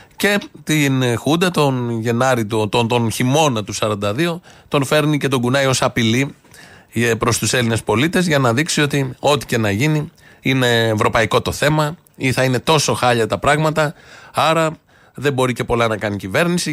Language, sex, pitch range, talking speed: Greek, male, 120-155 Hz, 175 wpm